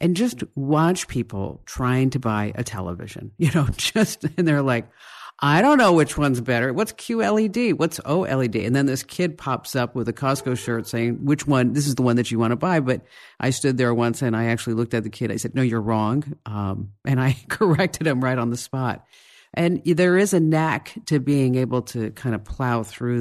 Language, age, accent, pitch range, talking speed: English, 50-69, American, 110-140 Hz, 220 wpm